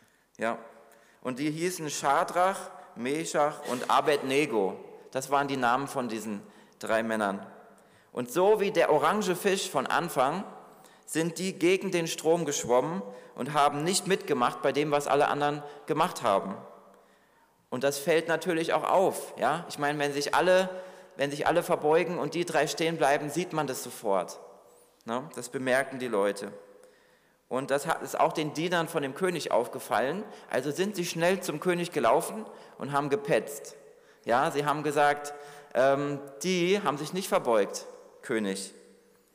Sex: male